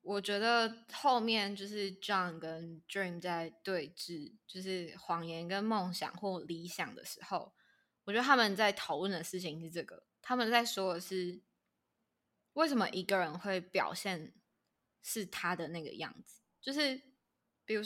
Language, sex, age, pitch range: Chinese, female, 20-39, 180-225 Hz